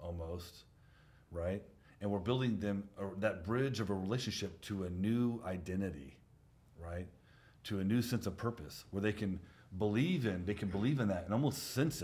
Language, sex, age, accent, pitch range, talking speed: English, male, 40-59, American, 90-120 Hz, 180 wpm